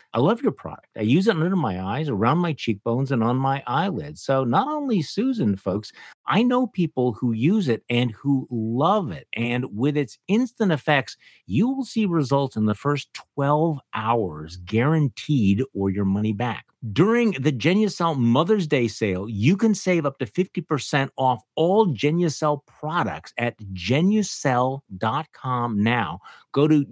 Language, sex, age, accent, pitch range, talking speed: English, male, 50-69, American, 115-170 Hz, 160 wpm